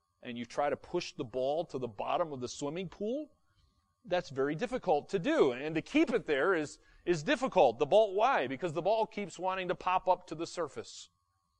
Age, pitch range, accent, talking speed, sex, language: 30-49, 100-160 Hz, American, 210 wpm, male, English